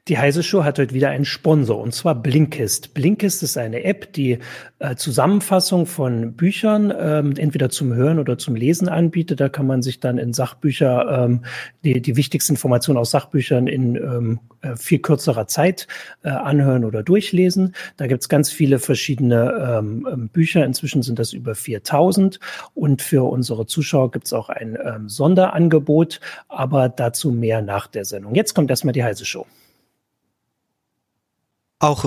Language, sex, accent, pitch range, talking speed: German, male, German, 115-150 Hz, 160 wpm